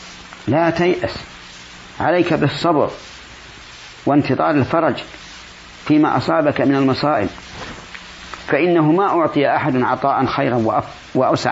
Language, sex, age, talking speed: Arabic, male, 50-69, 90 wpm